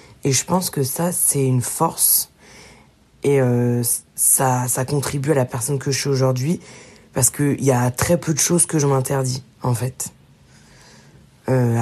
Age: 20-39